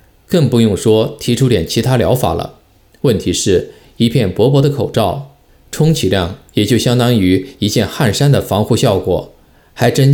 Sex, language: male, Chinese